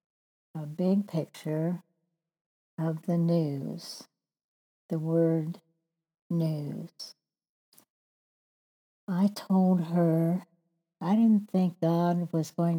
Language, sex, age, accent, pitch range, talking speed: English, female, 60-79, American, 165-185 Hz, 85 wpm